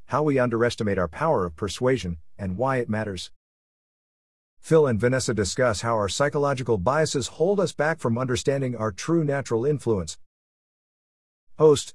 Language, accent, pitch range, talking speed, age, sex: English, American, 90-120 Hz, 145 wpm, 50-69, male